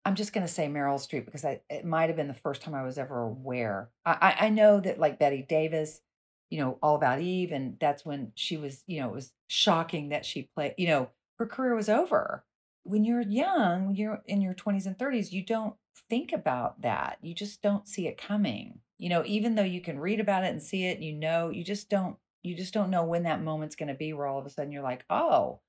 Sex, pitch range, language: female, 140-195 Hz, English